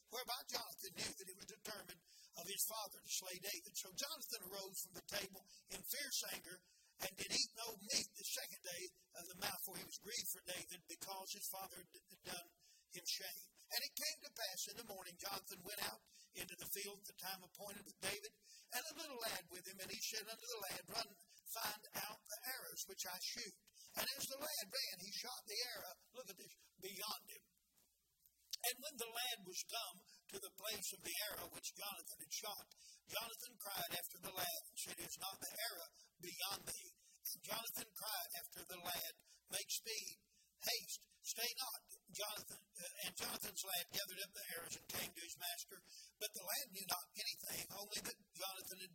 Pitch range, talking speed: 180-225 Hz, 200 wpm